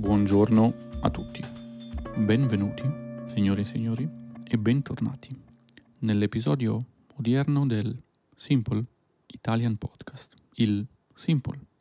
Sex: male